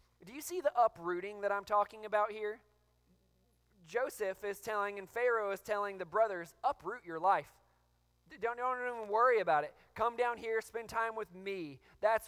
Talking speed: 175 wpm